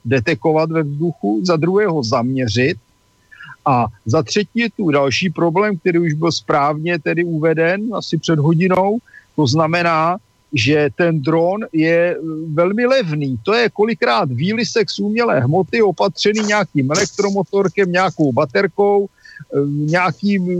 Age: 50-69